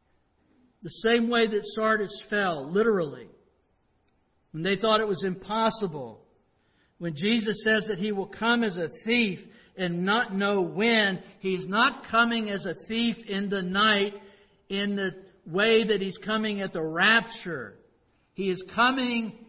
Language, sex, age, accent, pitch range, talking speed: English, male, 60-79, American, 165-220 Hz, 150 wpm